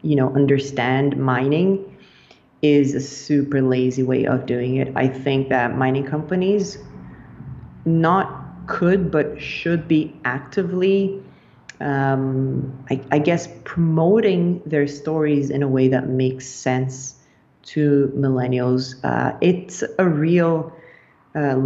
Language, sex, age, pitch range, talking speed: English, female, 30-49, 135-155 Hz, 120 wpm